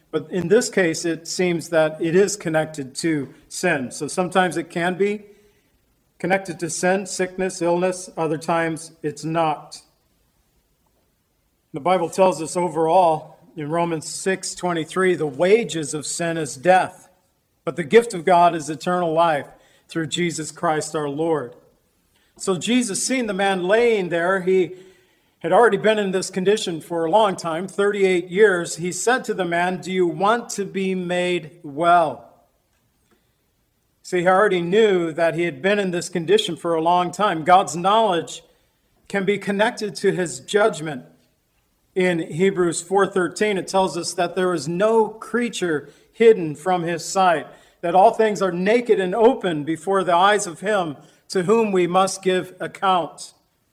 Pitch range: 165-195 Hz